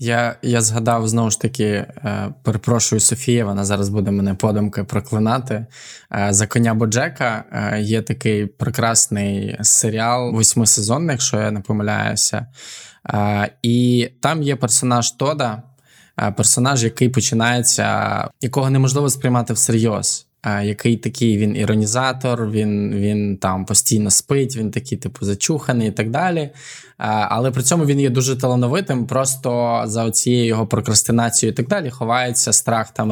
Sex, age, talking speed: male, 20-39, 130 wpm